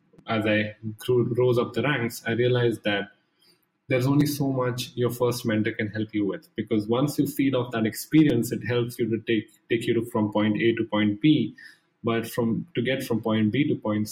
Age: 20-39